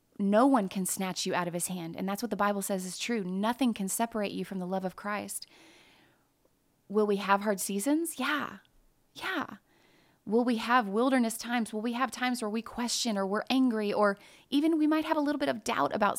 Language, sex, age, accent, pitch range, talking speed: English, female, 30-49, American, 190-230 Hz, 220 wpm